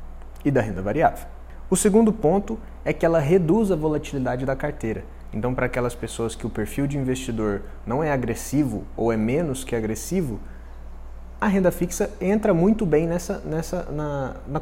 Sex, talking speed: male, 170 wpm